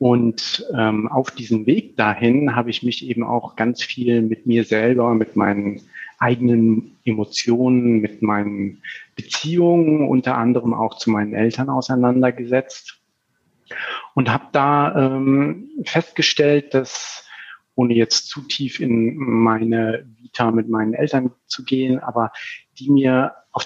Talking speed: 130 wpm